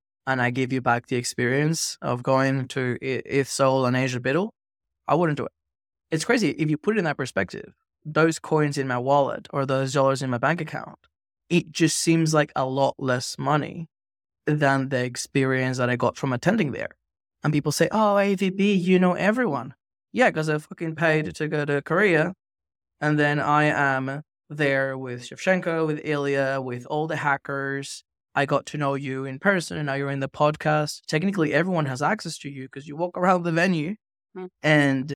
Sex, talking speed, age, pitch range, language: male, 195 wpm, 20-39, 130-155 Hz, English